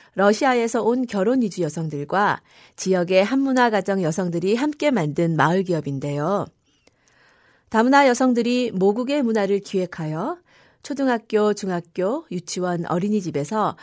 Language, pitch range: Korean, 165-240 Hz